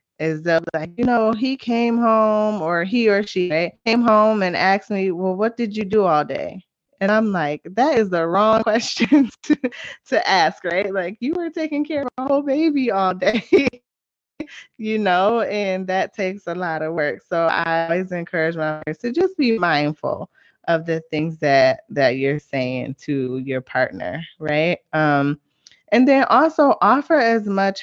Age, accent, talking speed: 20-39, American, 185 wpm